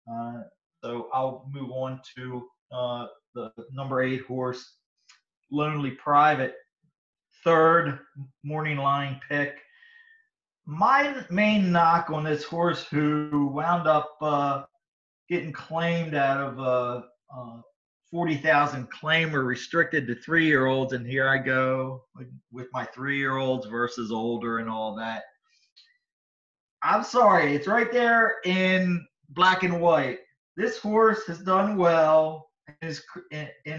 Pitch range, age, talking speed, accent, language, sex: 130-170 Hz, 40-59, 115 wpm, American, English, male